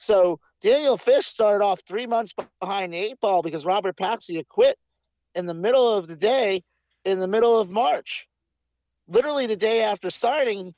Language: English